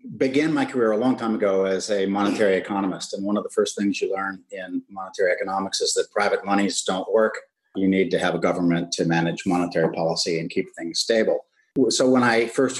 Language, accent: English, American